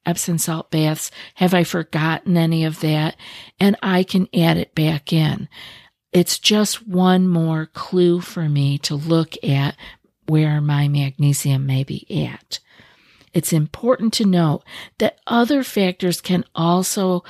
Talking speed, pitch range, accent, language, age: 140 wpm, 150-180 Hz, American, English, 50-69